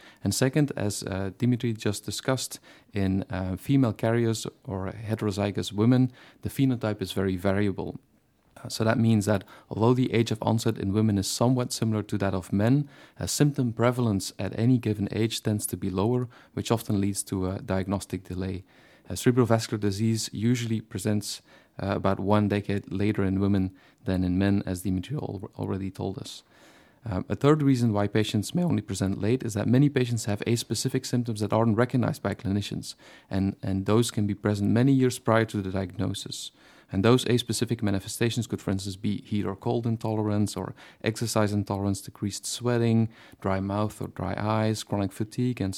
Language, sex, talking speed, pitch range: English, male, 175 wpm, 100-120 Hz